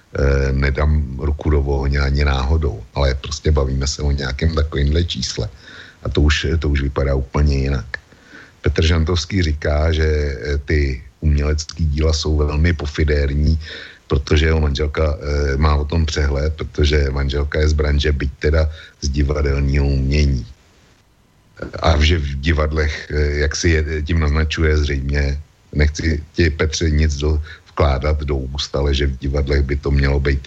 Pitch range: 70-80 Hz